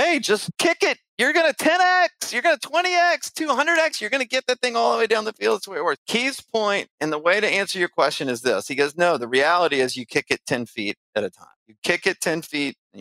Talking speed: 270 wpm